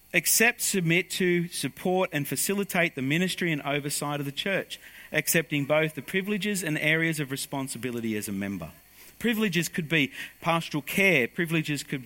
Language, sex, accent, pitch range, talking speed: English, male, Australian, 115-170 Hz, 155 wpm